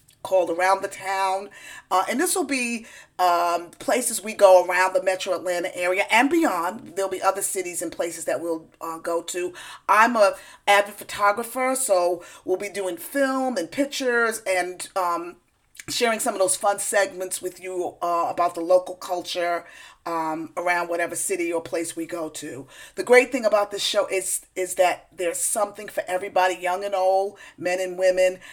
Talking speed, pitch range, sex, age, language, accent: 180 wpm, 175-205 Hz, female, 40-59, English, American